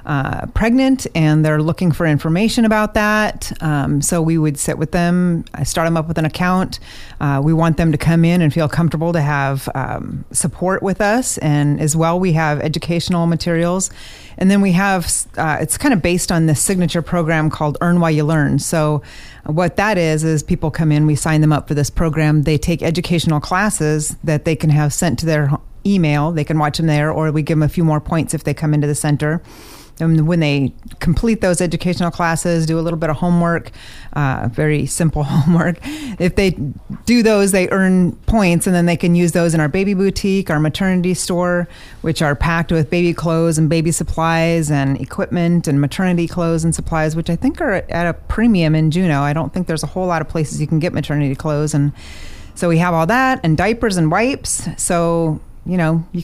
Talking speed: 215 wpm